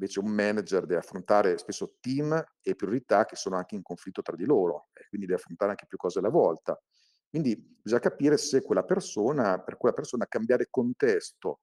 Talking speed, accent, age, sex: 190 wpm, native, 50-69, male